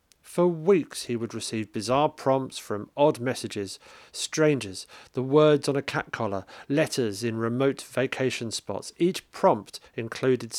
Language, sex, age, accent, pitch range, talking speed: English, male, 40-59, British, 110-140 Hz, 140 wpm